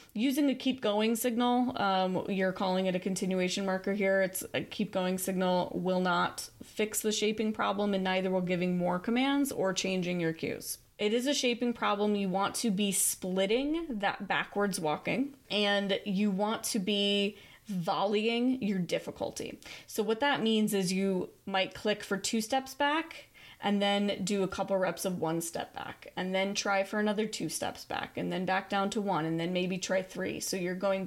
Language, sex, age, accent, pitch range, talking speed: English, female, 20-39, American, 185-225 Hz, 190 wpm